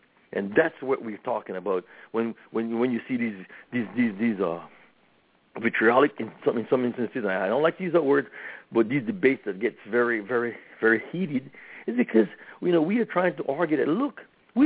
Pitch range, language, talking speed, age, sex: 120-180 Hz, English, 210 wpm, 60-79, male